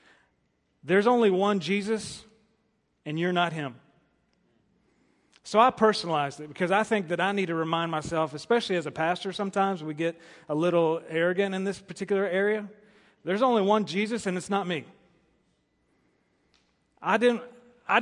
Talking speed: 150 wpm